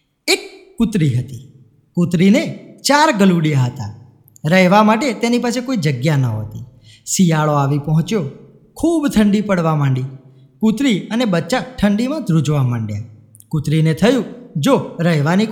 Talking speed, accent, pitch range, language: 105 wpm, native, 140-215 Hz, Gujarati